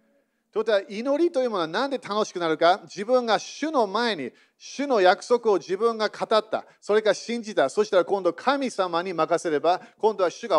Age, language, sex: 40-59, Japanese, male